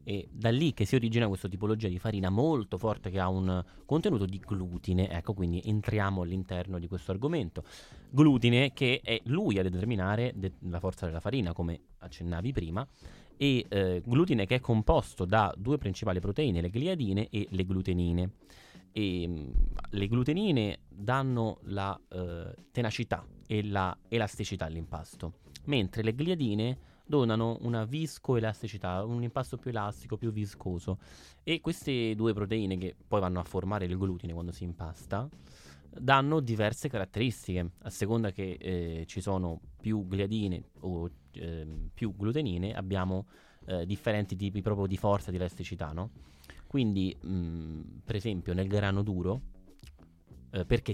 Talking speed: 145 wpm